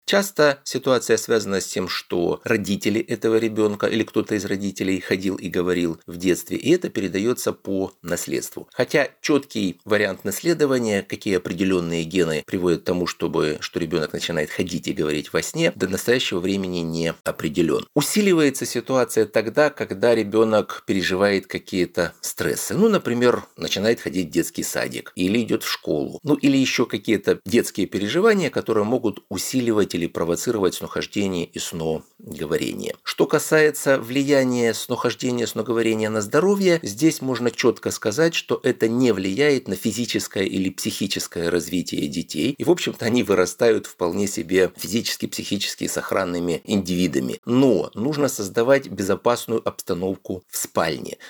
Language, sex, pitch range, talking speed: Russian, male, 95-120 Hz, 140 wpm